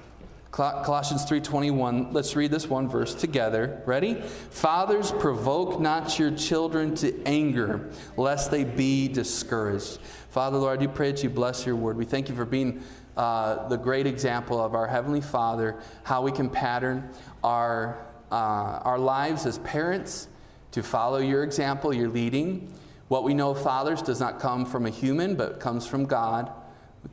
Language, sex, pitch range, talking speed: English, male, 120-150 Hz, 165 wpm